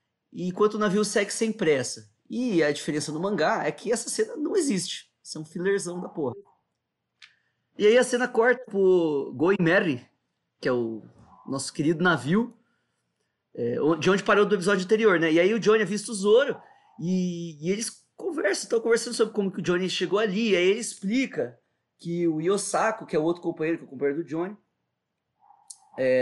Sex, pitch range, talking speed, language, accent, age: male, 170-235 Hz, 190 wpm, Portuguese, Brazilian, 20-39